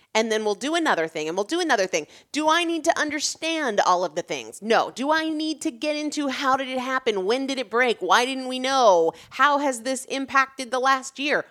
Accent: American